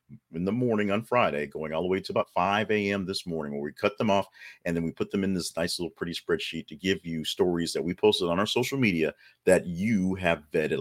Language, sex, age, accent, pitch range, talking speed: English, male, 40-59, American, 85-115 Hz, 255 wpm